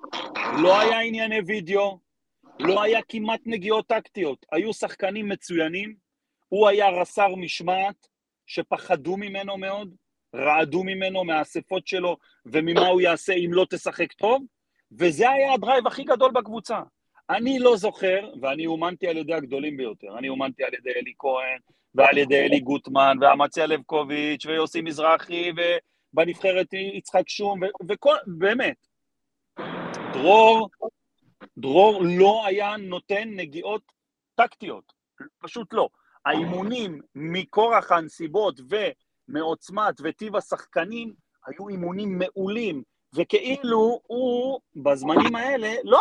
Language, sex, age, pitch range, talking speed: Hebrew, male, 40-59, 170-220 Hz, 115 wpm